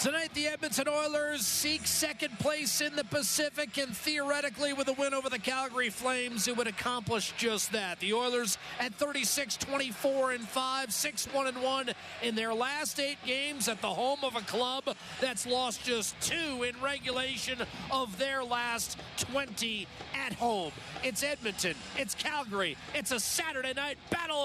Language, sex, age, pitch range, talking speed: English, male, 40-59, 235-275 Hz, 150 wpm